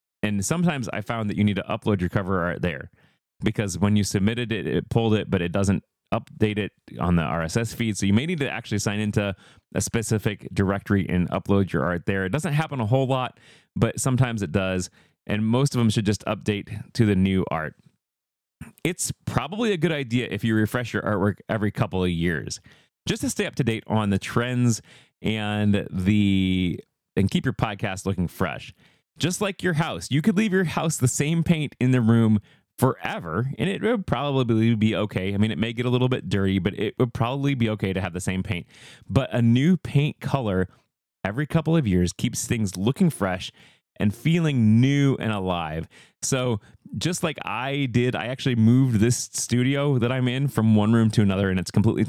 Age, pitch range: 30-49, 100-130 Hz